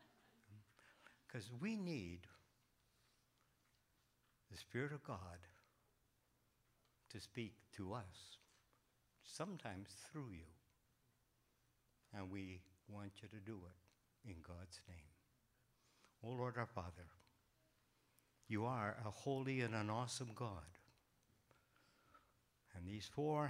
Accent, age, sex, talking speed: American, 60-79, male, 95 wpm